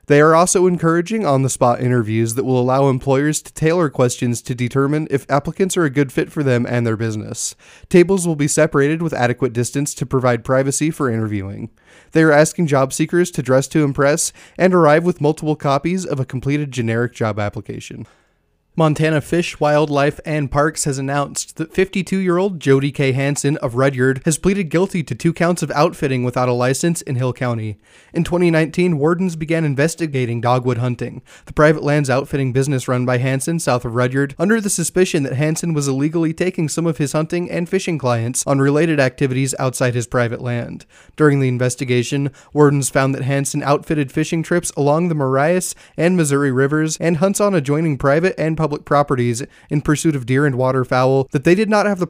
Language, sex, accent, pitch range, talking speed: English, male, American, 130-165 Hz, 185 wpm